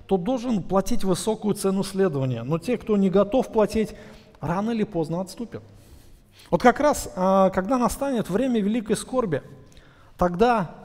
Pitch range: 150-230 Hz